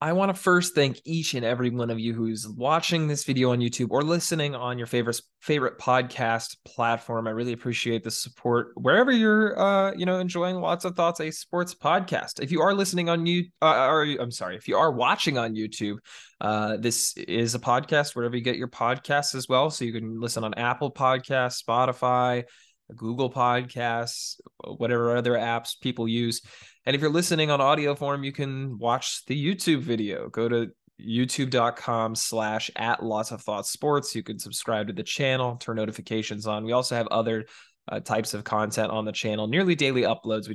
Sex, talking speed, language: male, 195 wpm, English